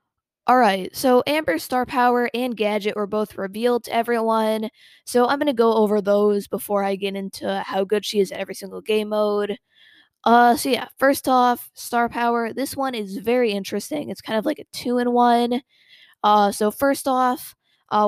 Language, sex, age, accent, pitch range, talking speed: English, female, 20-39, American, 205-245 Hz, 185 wpm